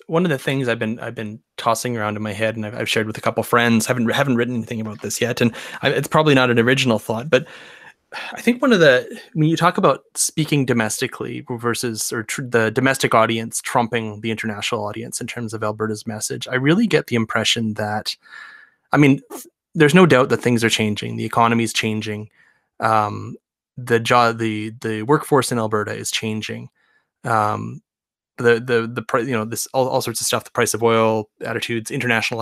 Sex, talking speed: male, 210 wpm